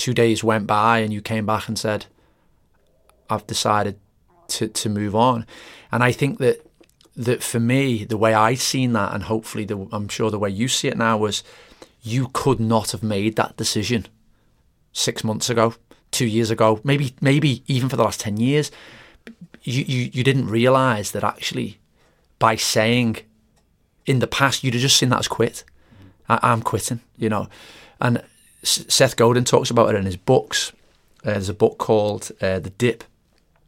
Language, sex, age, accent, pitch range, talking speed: English, male, 30-49, British, 105-125 Hz, 180 wpm